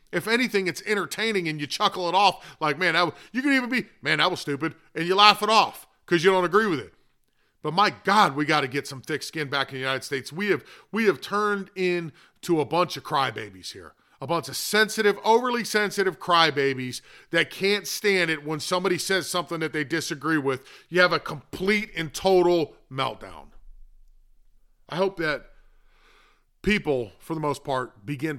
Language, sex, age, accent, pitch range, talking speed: English, male, 40-59, American, 135-180 Hz, 195 wpm